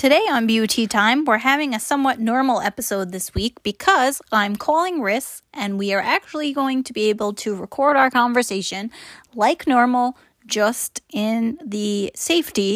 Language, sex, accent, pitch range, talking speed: English, female, American, 210-275 Hz, 160 wpm